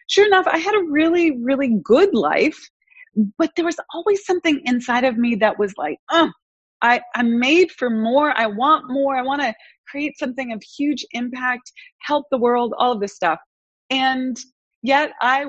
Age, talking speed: 30-49, 180 wpm